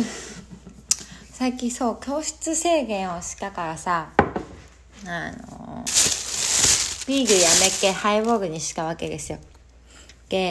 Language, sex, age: Japanese, female, 20-39